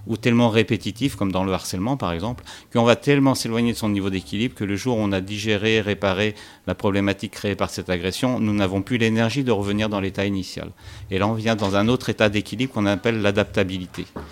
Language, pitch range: French, 100-120 Hz